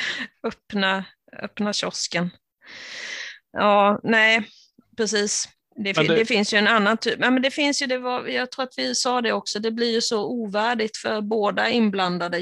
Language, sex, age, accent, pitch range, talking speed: Swedish, female, 30-49, native, 185-225 Hz, 170 wpm